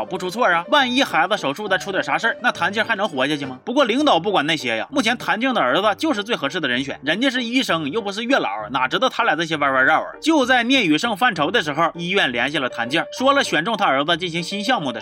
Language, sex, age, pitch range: Chinese, male, 30-49, 175-270 Hz